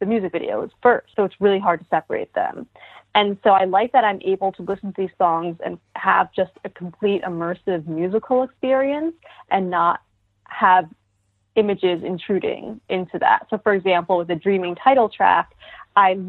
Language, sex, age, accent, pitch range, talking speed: English, female, 30-49, American, 175-215 Hz, 175 wpm